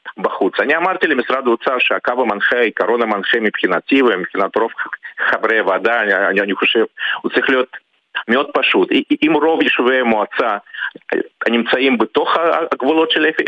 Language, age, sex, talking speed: Hebrew, 50-69, male, 135 wpm